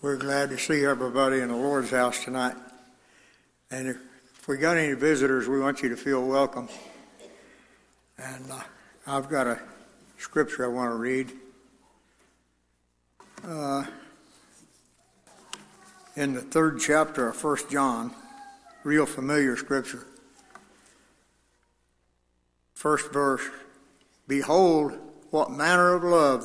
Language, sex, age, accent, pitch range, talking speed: English, male, 60-79, American, 130-165 Hz, 115 wpm